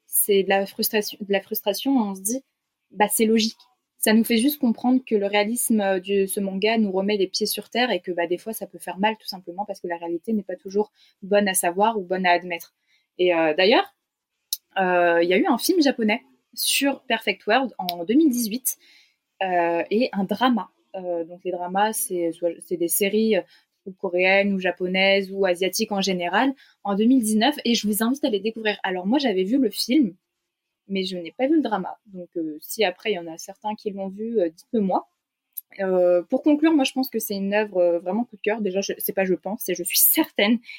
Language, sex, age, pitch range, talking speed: French, female, 20-39, 185-230 Hz, 225 wpm